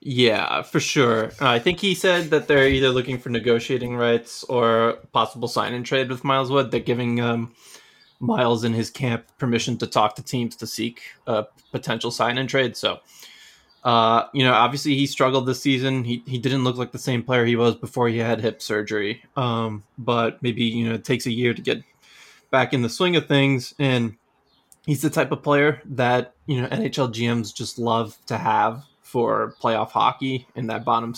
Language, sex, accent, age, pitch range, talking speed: English, male, American, 20-39, 115-135 Hz, 195 wpm